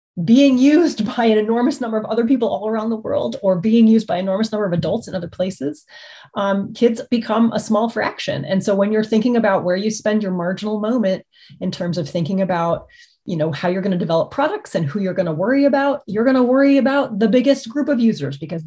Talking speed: 240 wpm